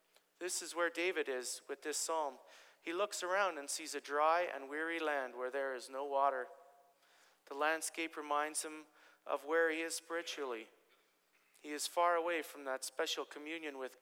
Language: English